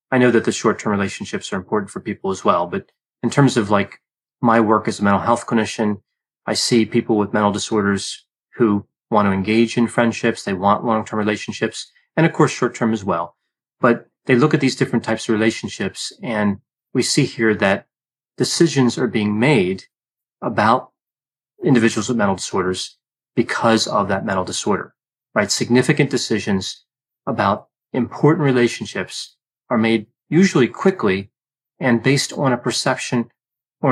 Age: 30-49